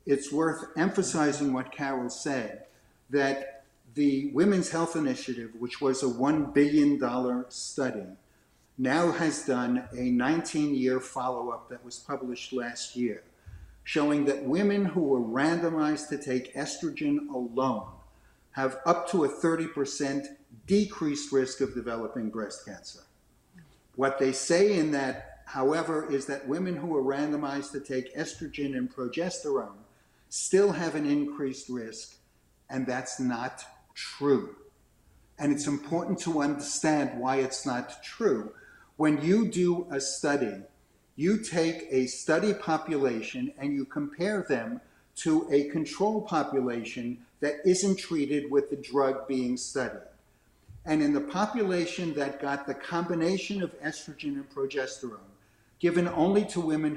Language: English